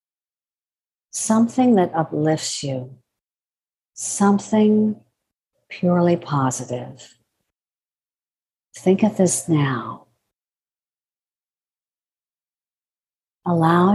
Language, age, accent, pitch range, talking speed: English, 50-69, American, 140-185 Hz, 50 wpm